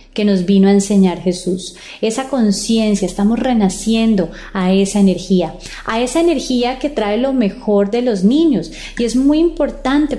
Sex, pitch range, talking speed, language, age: female, 190-225 Hz, 160 wpm, Spanish, 20-39